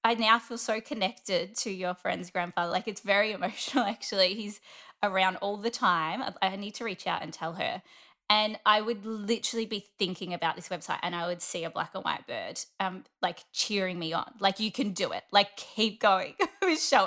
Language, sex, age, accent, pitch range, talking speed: English, female, 20-39, Australian, 185-245 Hz, 205 wpm